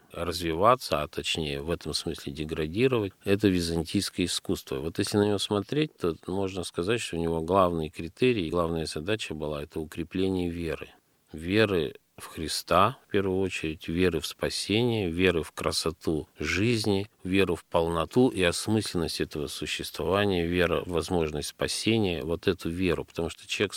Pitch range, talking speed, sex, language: 80-105 Hz, 150 wpm, male, Russian